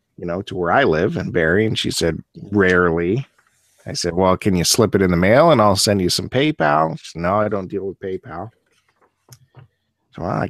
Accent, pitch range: American, 95-125 Hz